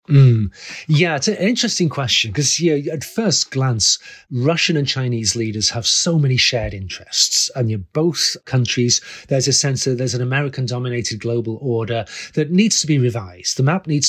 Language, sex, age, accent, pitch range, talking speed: English, male, 30-49, British, 120-150 Hz, 180 wpm